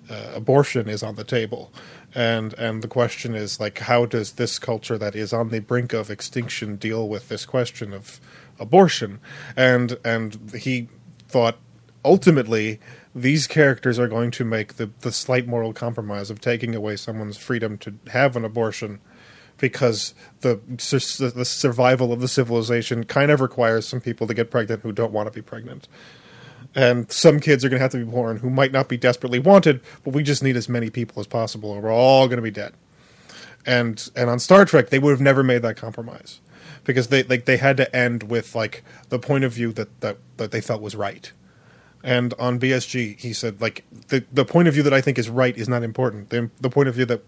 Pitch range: 115-130 Hz